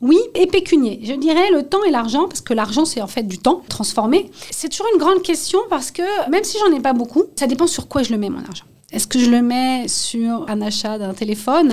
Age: 40-59